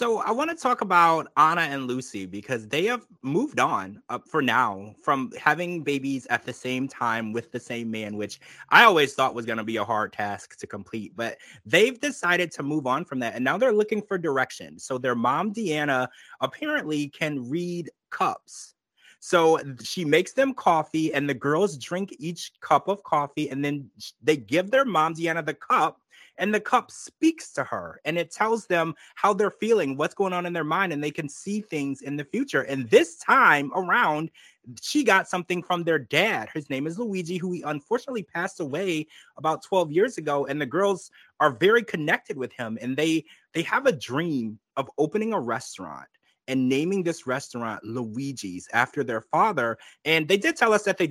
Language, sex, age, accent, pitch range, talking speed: English, male, 30-49, American, 135-185 Hz, 195 wpm